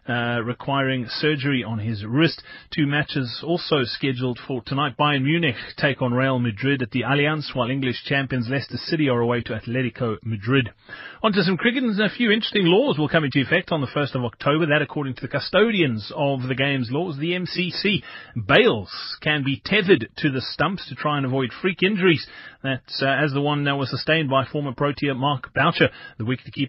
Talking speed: 195 wpm